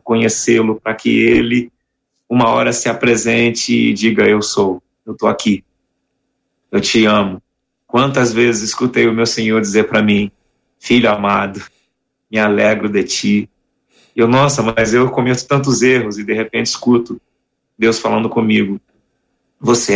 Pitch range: 110-125 Hz